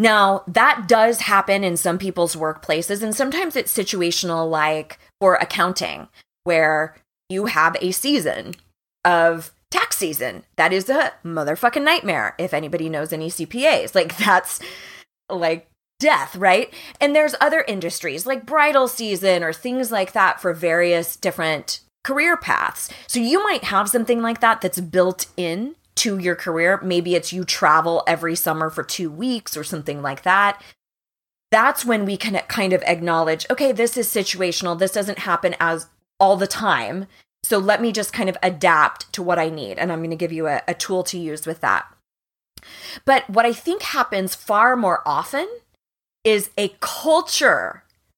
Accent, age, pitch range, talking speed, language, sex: American, 20-39, 165-225 Hz, 165 wpm, English, female